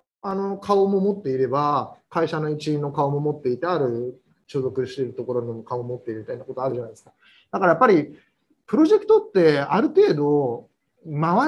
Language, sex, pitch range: Japanese, male, 130-195 Hz